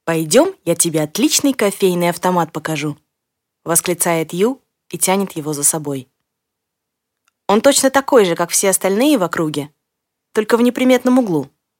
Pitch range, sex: 165-225 Hz, female